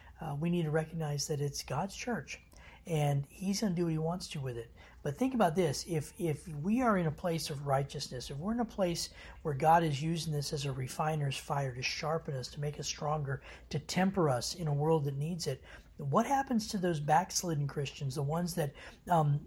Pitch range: 130-160 Hz